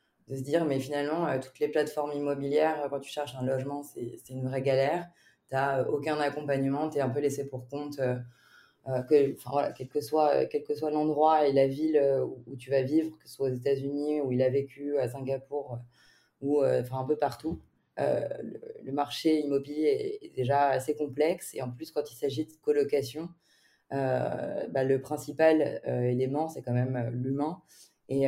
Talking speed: 200 wpm